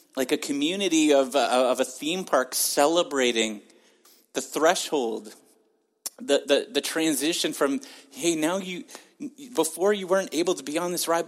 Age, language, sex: 30-49, English, male